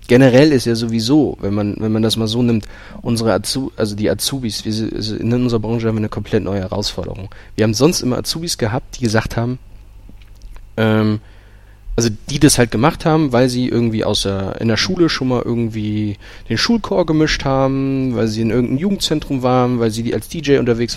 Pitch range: 105-135 Hz